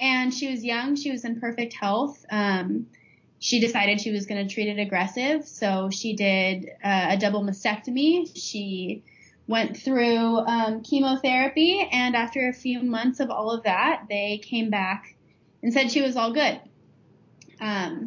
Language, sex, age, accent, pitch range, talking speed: English, female, 20-39, American, 205-260 Hz, 165 wpm